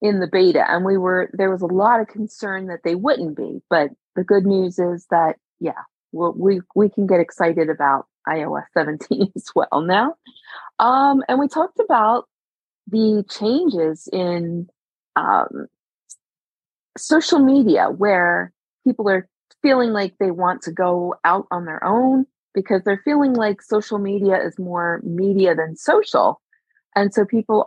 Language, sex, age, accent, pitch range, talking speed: English, female, 30-49, American, 175-220 Hz, 155 wpm